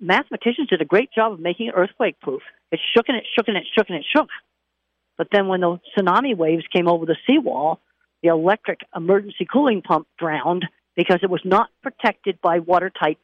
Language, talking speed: English, 200 wpm